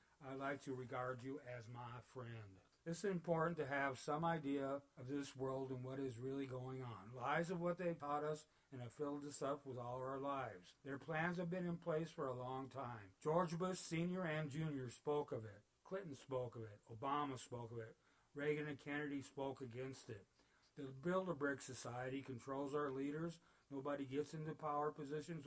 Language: English